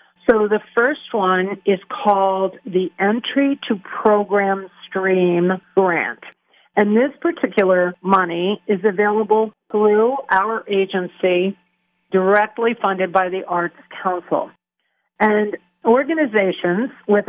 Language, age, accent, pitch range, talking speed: English, 50-69, American, 185-215 Hz, 105 wpm